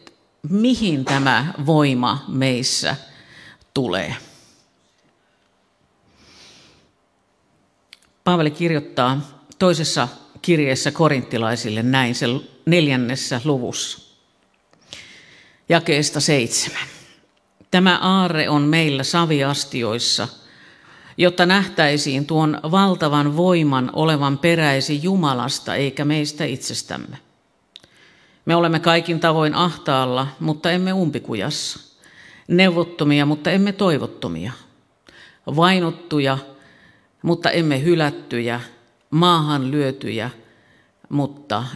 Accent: native